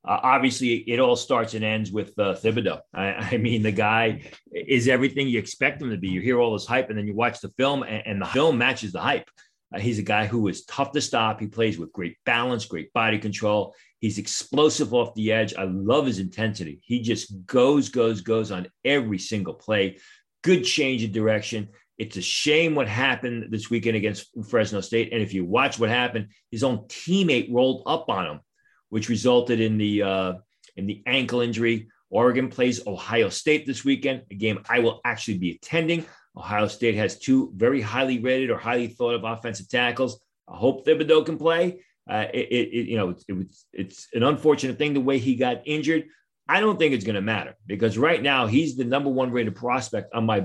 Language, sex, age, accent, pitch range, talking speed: English, male, 40-59, American, 105-130 Hz, 210 wpm